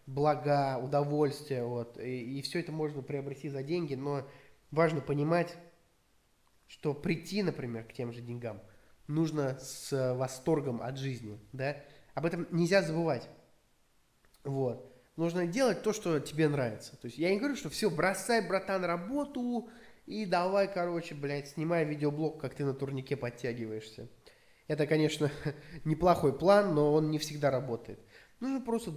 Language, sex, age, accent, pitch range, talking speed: Russian, male, 20-39, native, 130-165 Hz, 145 wpm